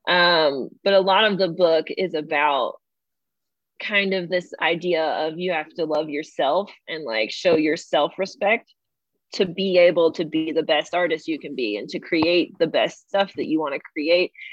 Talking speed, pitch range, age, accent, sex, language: 190 wpm, 165-210 Hz, 20-39, American, female, English